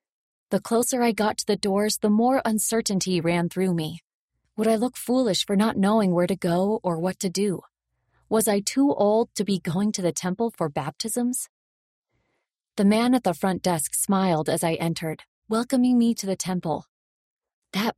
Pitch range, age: 175-220 Hz, 30-49